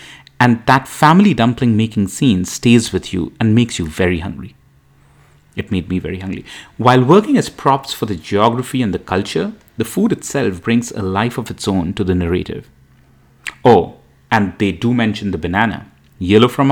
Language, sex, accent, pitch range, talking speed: English, male, Indian, 95-125 Hz, 175 wpm